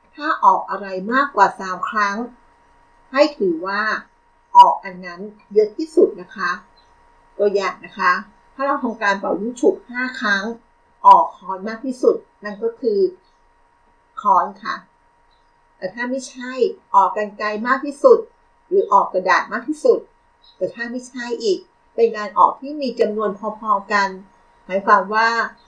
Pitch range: 195-275 Hz